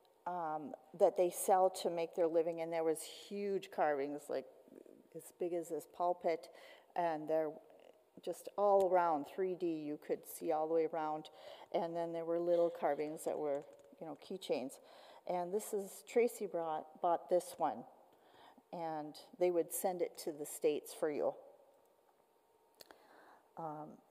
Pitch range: 170-240 Hz